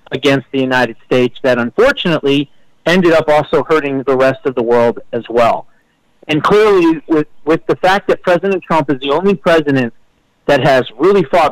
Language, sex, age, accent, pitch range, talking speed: English, male, 40-59, American, 135-175 Hz, 175 wpm